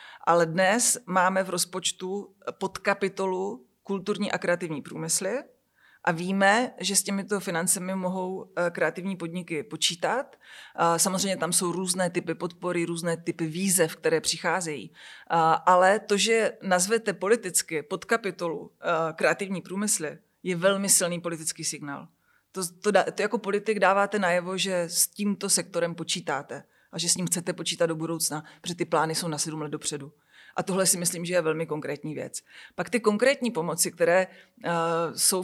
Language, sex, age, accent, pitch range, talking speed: Czech, female, 30-49, native, 170-200 Hz, 145 wpm